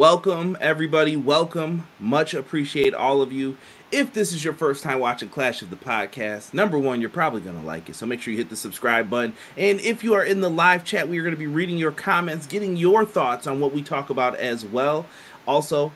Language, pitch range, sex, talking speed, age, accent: English, 125-155 Hz, male, 235 wpm, 30-49, American